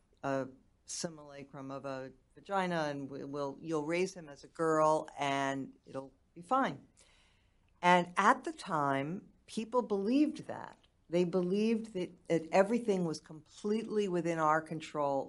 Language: English